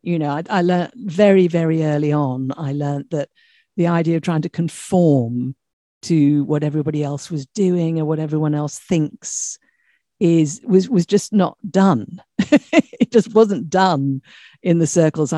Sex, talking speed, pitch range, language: female, 165 wpm, 155-215 Hz, English